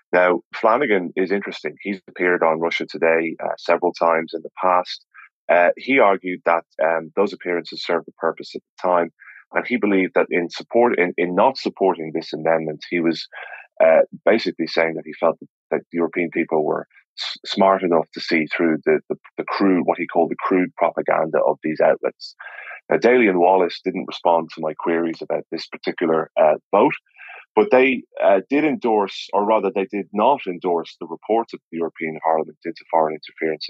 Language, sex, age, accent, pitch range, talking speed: English, male, 30-49, British, 80-90 Hz, 190 wpm